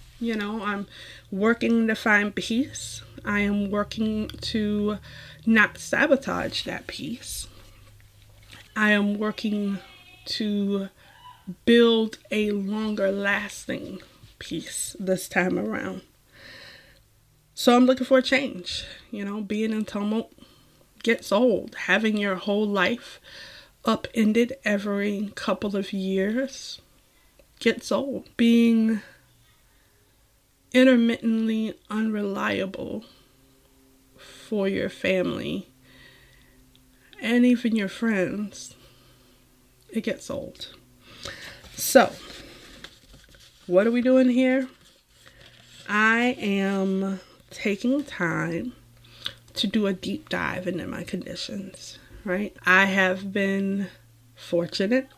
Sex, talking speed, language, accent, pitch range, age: female, 95 wpm, English, American, 180-225 Hz, 20-39